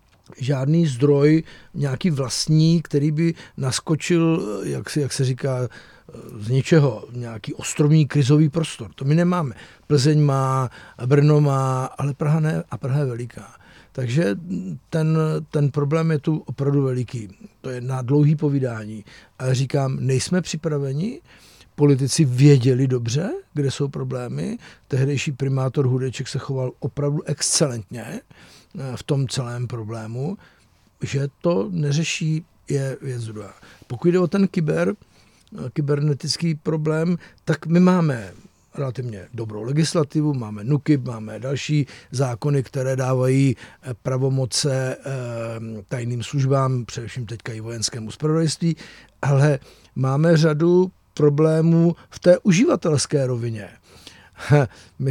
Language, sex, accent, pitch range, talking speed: Czech, male, native, 130-155 Hz, 120 wpm